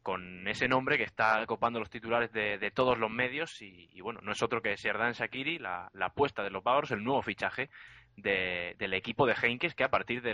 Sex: male